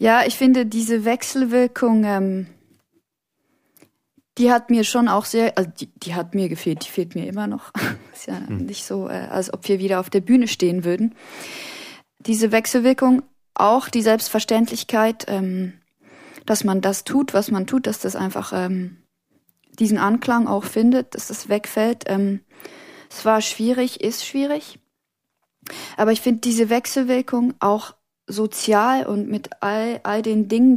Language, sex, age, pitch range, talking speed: German, female, 20-39, 200-245 Hz, 155 wpm